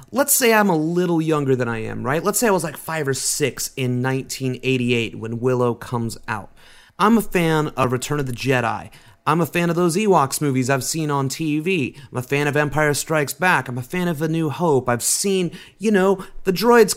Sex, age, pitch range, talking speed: male, 30-49, 130-180 Hz, 225 wpm